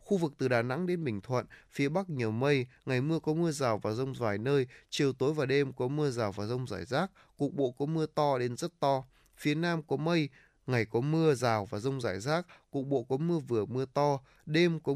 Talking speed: 245 wpm